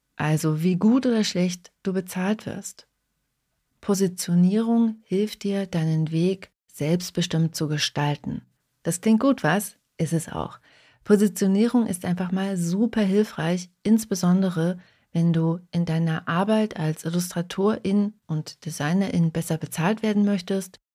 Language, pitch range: German, 165-215 Hz